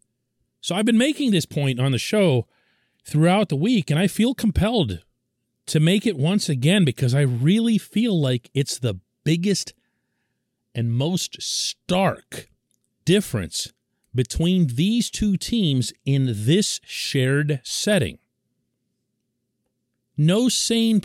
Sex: male